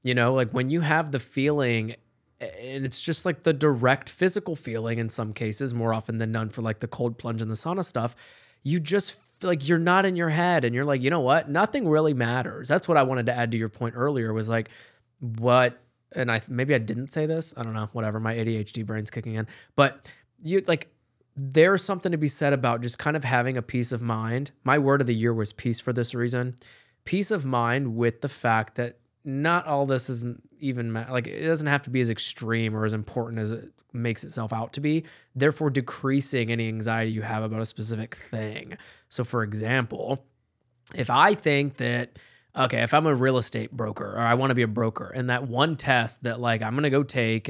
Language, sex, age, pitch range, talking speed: English, male, 20-39, 115-140 Hz, 225 wpm